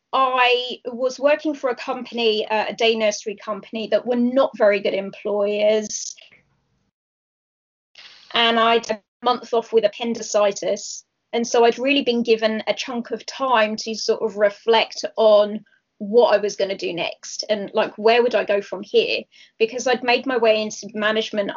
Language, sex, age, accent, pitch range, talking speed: English, female, 20-39, British, 215-245 Hz, 165 wpm